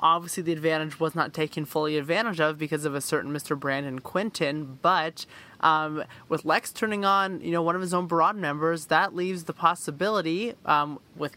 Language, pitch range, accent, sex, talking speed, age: English, 145-170 Hz, American, male, 190 wpm, 20-39